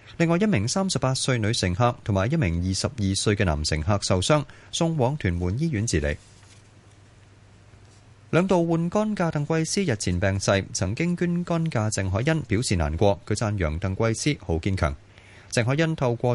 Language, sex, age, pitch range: Chinese, male, 30-49, 100-150 Hz